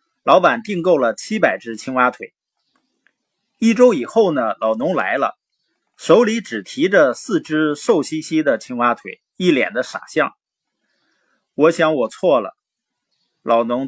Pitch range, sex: 140-225 Hz, male